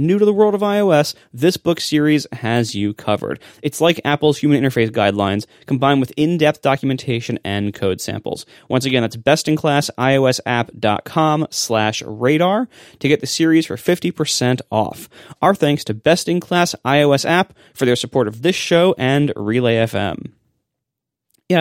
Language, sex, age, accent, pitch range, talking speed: English, male, 20-39, American, 110-150 Hz, 155 wpm